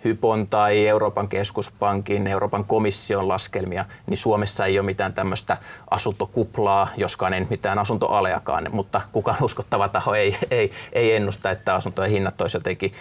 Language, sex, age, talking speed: Finnish, male, 20-39, 145 wpm